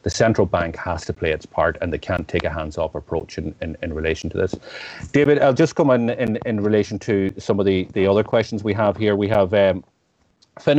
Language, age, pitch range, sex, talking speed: English, 30-49, 100-120 Hz, male, 240 wpm